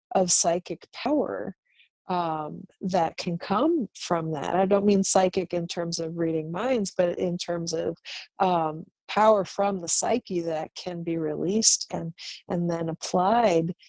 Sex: female